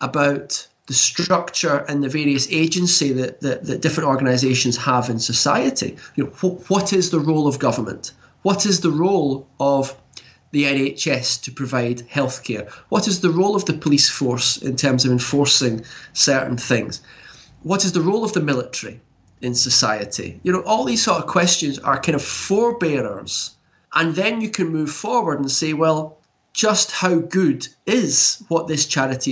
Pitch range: 125-160 Hz